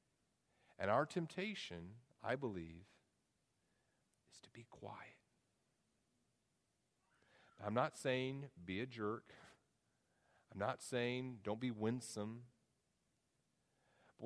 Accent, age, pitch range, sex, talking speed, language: American, 40-59, 105-140 Hz, male, 95 wpm, English